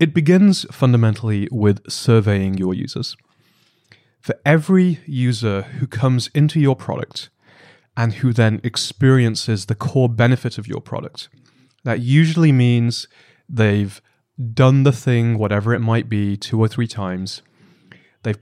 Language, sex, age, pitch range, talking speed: English, male, 30-49, 110-135 Hz, 135 wpm